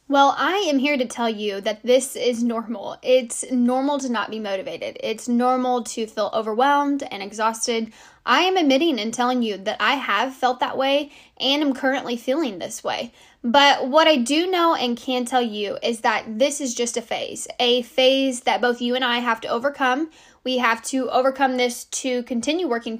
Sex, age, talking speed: female, 10-29, 200 wpm